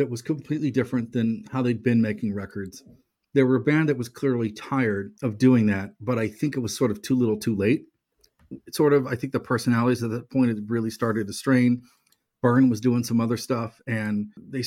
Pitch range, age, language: 110-130 Hz, 40-59, English